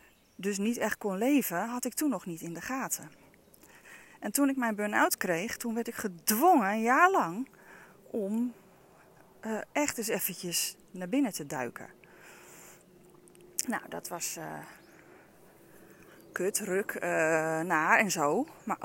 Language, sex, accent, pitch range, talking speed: Dutch, female, Dutch, 170-220 Hz, 145 wpm